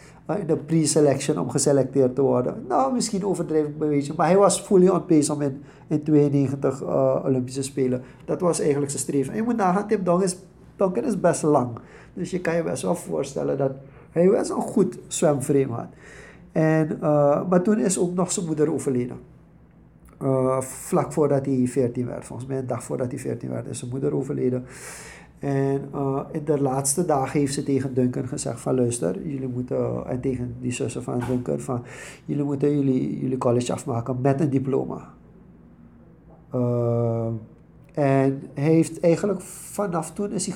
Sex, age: male, 50-69